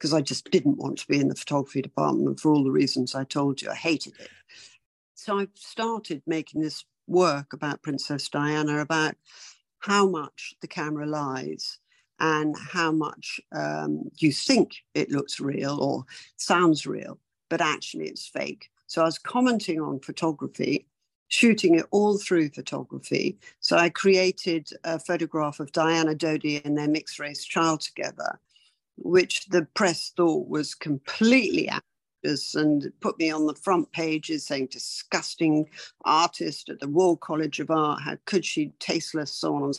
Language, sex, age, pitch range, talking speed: English, female, 50-69, 145-190 Hz, 160 wpm